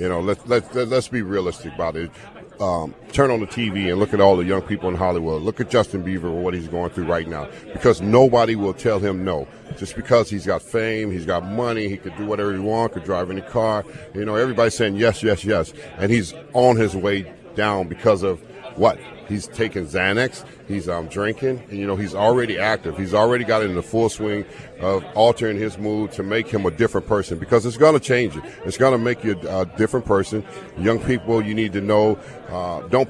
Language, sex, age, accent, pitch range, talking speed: English, male, 50-69, American, 95-115 Hz, 230 wpm